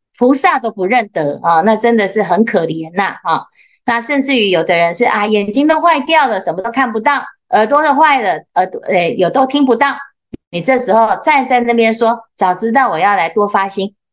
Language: Chinese